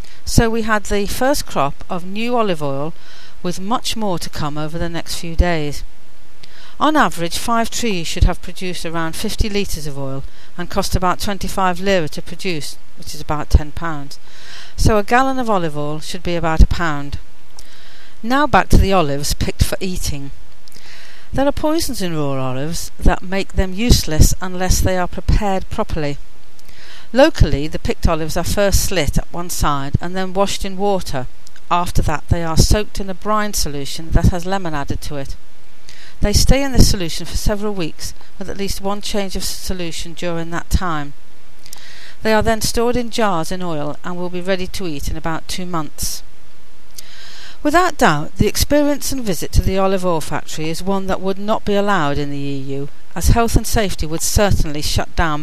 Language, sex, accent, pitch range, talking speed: English, female, British, 150-200 Hz, 185 wpm